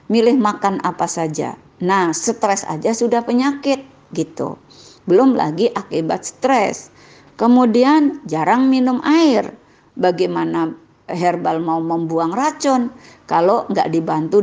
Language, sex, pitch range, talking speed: Indonesian, female, 175-265 Hz, 110 wpm